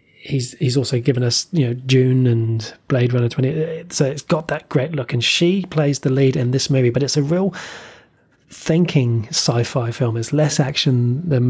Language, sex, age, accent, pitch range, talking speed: English, male, 20-39, British, 125-150 Hz, 195 wpm